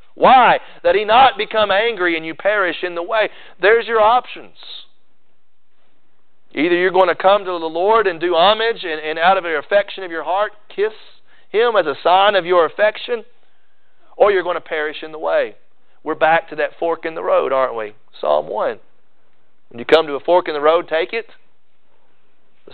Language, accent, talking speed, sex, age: English, American, 195 wpm, male, 40-59